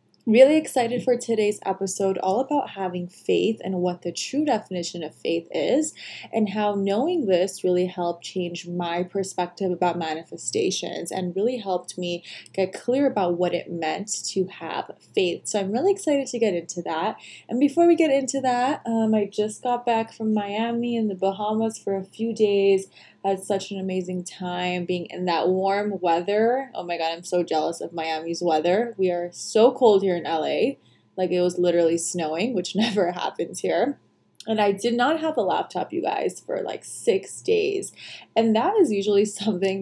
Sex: female